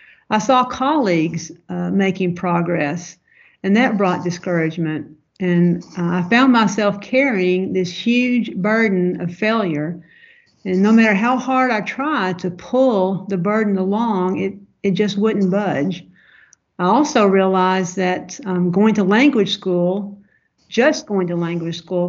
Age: 60-79